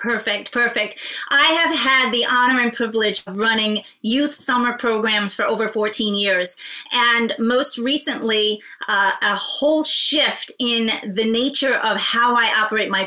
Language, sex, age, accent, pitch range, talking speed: English, female, 30-49, American, 210-250 Hz, 150 wpm